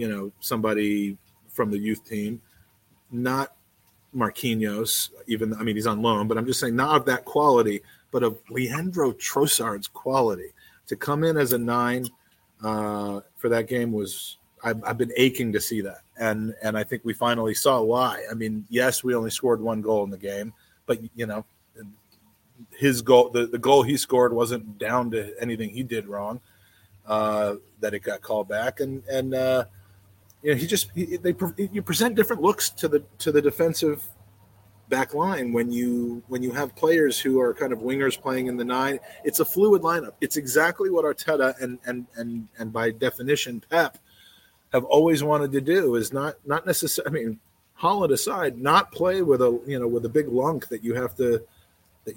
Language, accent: English, American